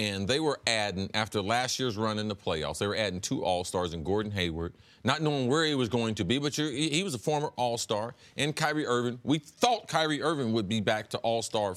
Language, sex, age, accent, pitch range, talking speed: English, male, 40-59, American, 115-190 Hz, 230 wpm